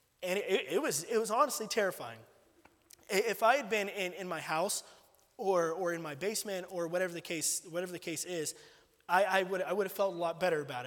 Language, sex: English, male